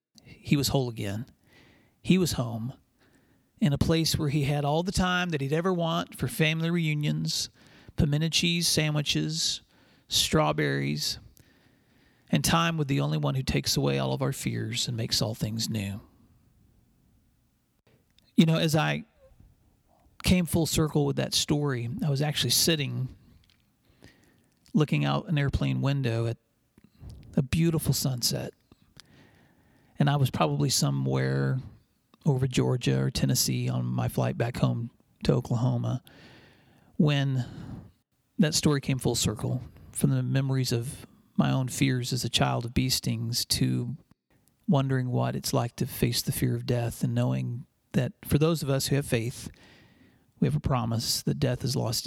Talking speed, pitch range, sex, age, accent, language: 150 wpm, 110-150 Hz, male, 40-59, American, English